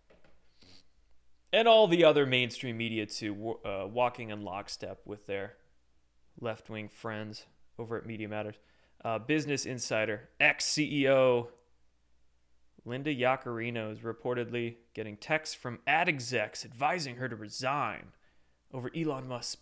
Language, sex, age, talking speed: English, male, 30-49, 120 wpm